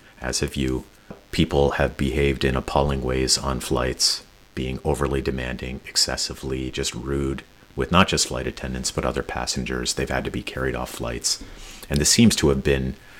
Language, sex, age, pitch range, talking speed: English, male, 30-49, 65-80 Hz, 175 wpm